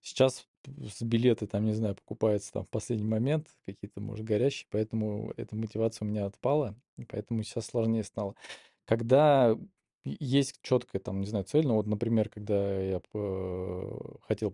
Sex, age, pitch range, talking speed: male, 20-39, 105-120 Hz, 165 wpm